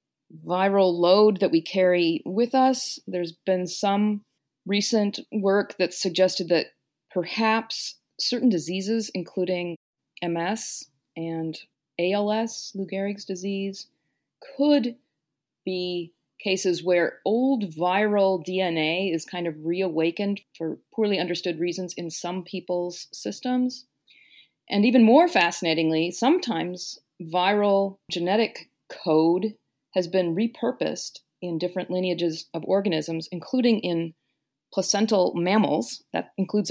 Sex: female